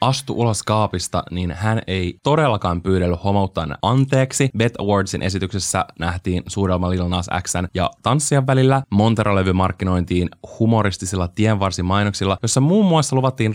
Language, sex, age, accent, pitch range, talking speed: Finnish, male, 20-39, native, 95-125 Hz, 125 wpm